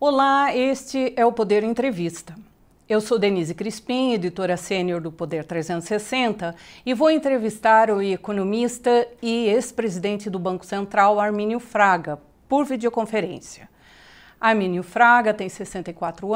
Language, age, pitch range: Portuguese, 40-59, 195-240 Hz